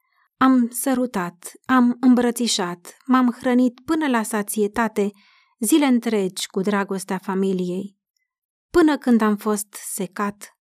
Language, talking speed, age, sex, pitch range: Romanian, 105 wpm, 30-49, female, 190-245 Hz